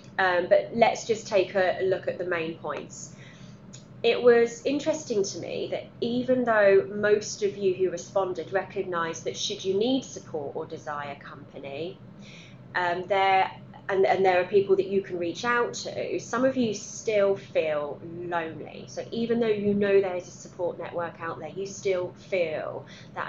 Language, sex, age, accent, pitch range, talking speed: English, female, 20-39, British, 170-225 Hz, 175 wpm